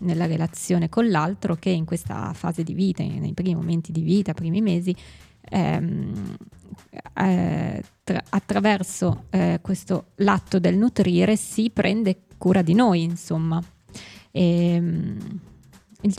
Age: 20-39